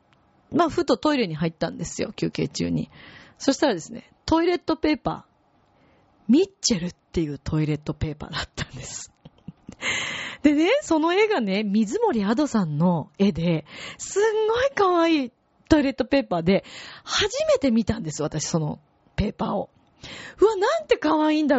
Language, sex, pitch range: Japanese, female, 165-260 Hz